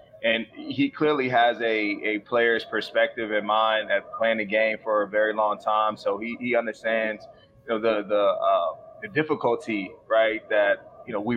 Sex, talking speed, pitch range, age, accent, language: male, 185 wpm, 115-125 Hz, 20-39, American, English